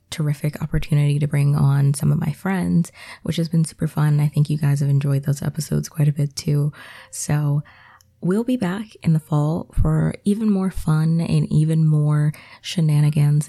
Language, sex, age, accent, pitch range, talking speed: English, female, 20-39, American, 140-160 Hz, 180 wpm